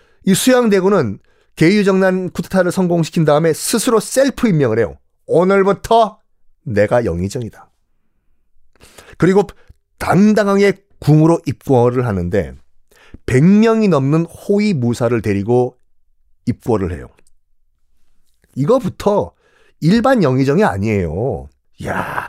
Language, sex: Korean, male